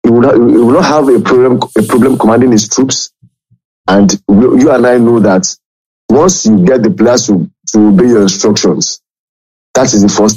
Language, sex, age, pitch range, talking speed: English, male, 50-69, 105-130 Hz, 205 wpm